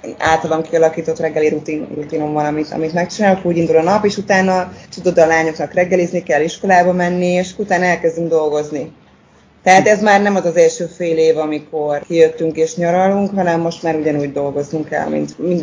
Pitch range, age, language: 160-185 Hz, 20-39, Hungarian